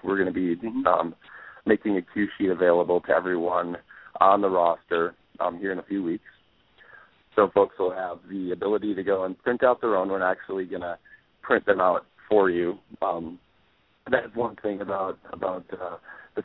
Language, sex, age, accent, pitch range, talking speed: English, male, 40-59, American, 95-115 Hz, 185 wpm